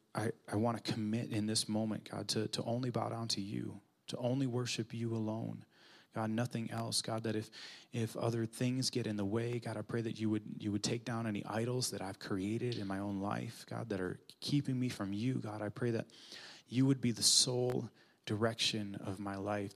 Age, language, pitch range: 20-39, English, 100-115 Hz